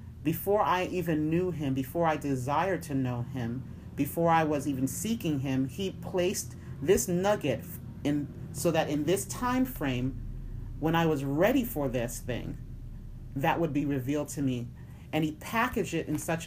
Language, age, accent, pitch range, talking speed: English, 40-59, American, 130-165 Hz, 170 wpm